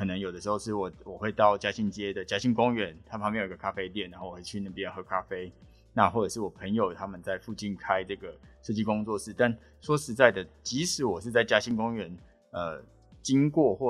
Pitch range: 95-125 Hz